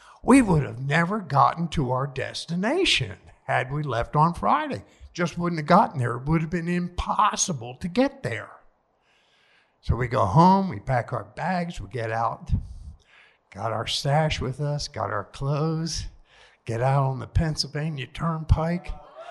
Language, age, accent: English, 60-79, American